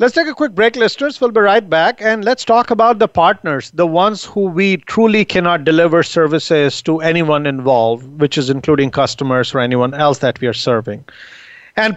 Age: 50-69